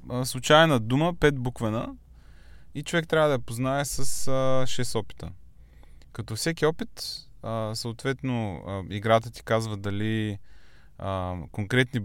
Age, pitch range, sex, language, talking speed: 20-39, 100-135 Hz, male, Bulgarian, 110 wpm